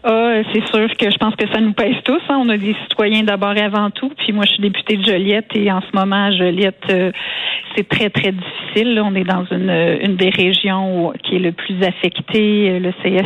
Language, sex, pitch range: French, female, 190-220 Hz